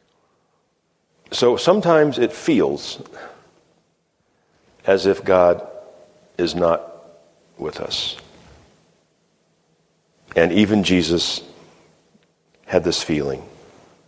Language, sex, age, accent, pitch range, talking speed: English, male, 50-69, American, 85-105 Hz, 70 wpm